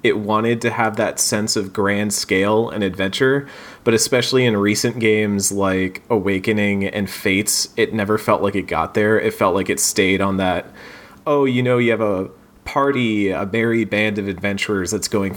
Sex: male